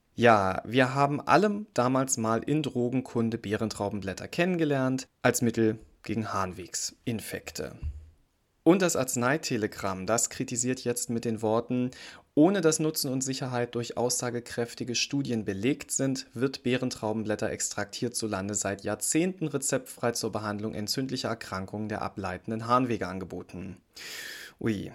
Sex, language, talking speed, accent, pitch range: male, German, 120 wpm, German, 110-135 Hz